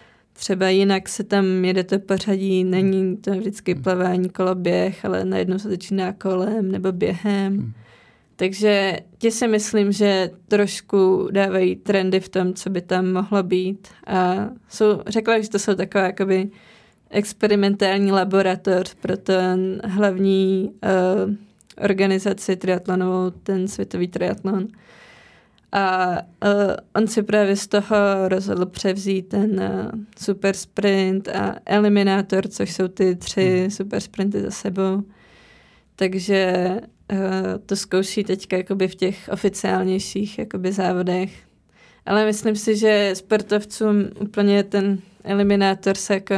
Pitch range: 185-205 Hz